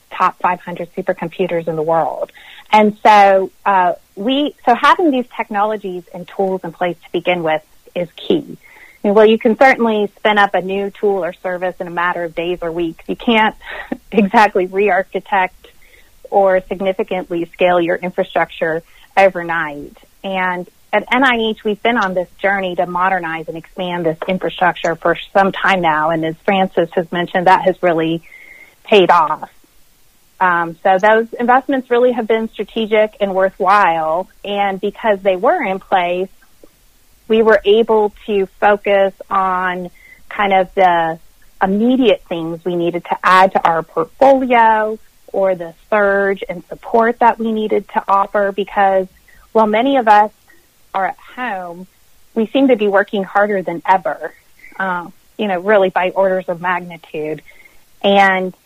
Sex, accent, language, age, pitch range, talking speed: female, American, English, 30-49, 180-215 Hz, 150 wpm